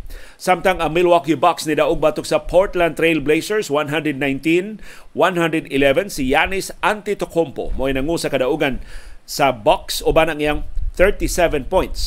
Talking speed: 130 wpm